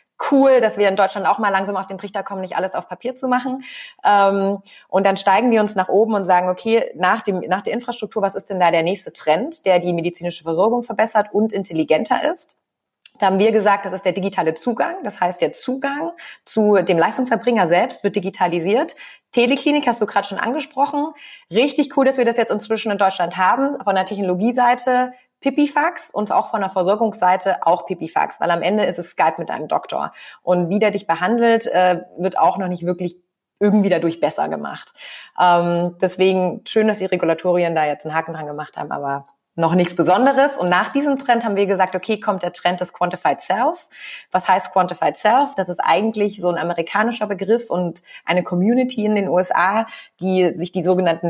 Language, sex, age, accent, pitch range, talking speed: German, female, 30-49, German, 180-230 Hz, 195 wpm